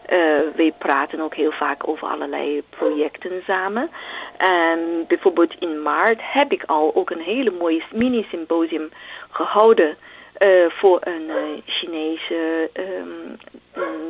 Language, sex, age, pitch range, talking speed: Dutch, female, 40-59, 160-230 Hz, 130 wpm